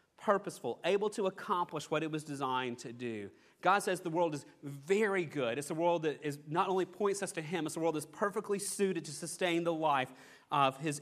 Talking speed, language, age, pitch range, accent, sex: 220 wpm, English, 30-49, 155-200 Hz, American, male